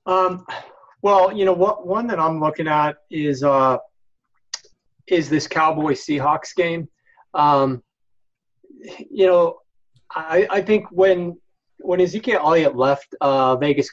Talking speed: 130 wpm